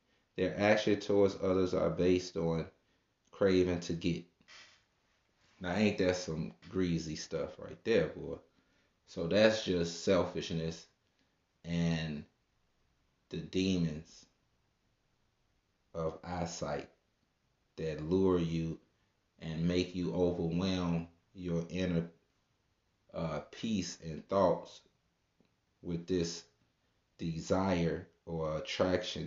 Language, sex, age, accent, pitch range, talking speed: English, male, 30-49, American, 80-95 Hz, 95 wpm